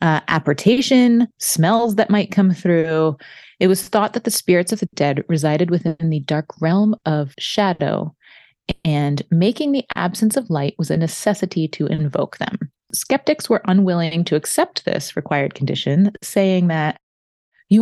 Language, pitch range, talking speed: English, 150-200 Hz, 155 wpm